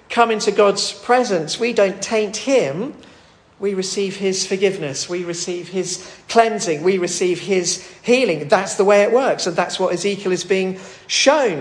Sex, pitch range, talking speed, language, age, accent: male, 190-245 Hz, 165 wpm, English, 40-59, British